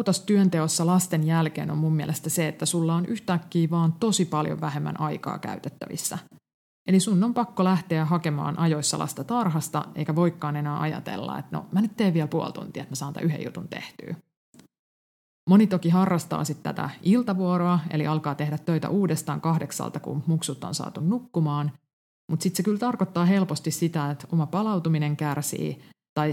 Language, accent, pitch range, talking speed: Finnish, native, 150-180 Hz, 170 wpm